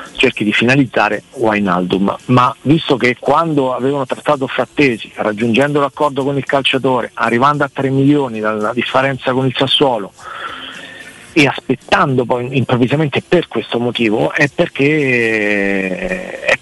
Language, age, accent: Italian, 40-59, native